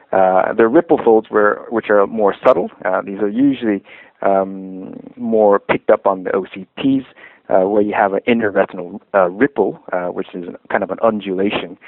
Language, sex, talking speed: English, male, 180 wpm